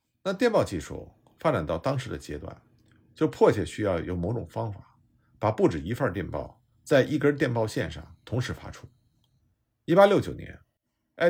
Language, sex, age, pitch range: Chinese, male, 50-69, 100-140 Hz